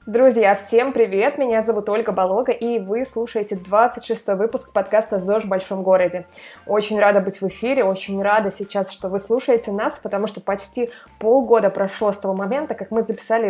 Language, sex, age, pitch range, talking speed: Russian, female, 20-39, 195-230 Hz, 180 wpm